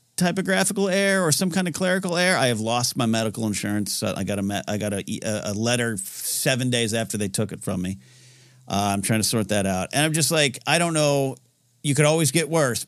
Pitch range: 100-135 Hz